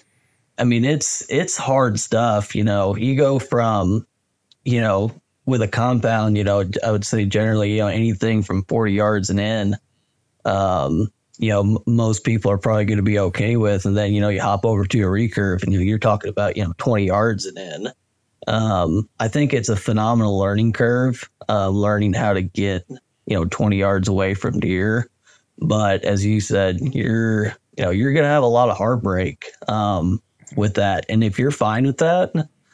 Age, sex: 30-49, male